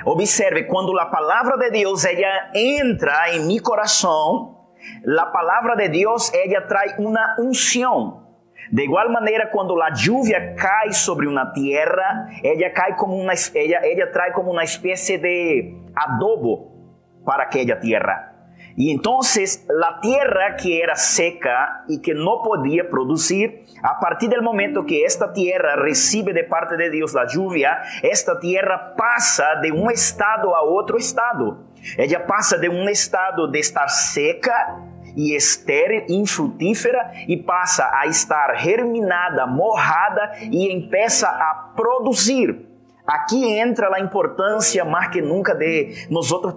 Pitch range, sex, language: 175-235 Hz, male, Spanish